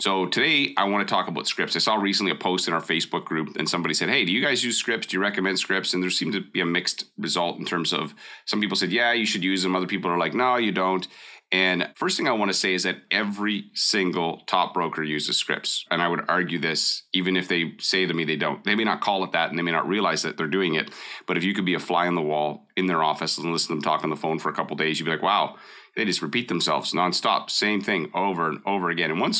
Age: 30-49